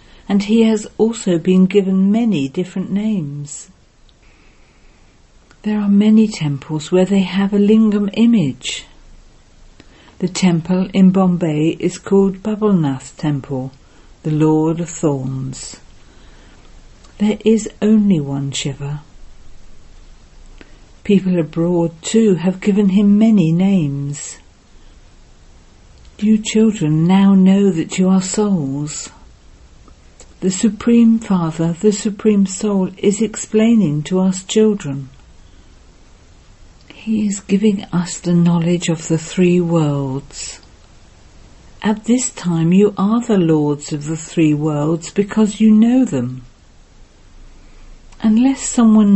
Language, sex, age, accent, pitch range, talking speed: English, female, 50-69, British, 145-205 Hz, 110 wpm